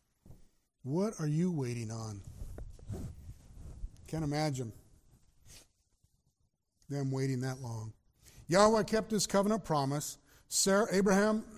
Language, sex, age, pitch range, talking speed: English, male, 50-69, 130-195 Hz, 90 wpm